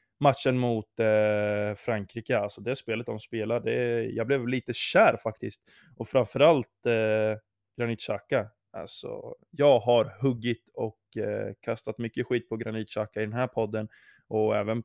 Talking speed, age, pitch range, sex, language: 155 wpm, 20-39, 110-125 Hz, male, Swedish